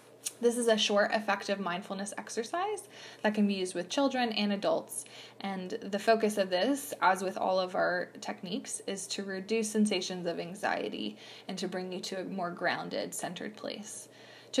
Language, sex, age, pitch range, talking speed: English, female, 20-39, 180-215 Hz, 175 wpm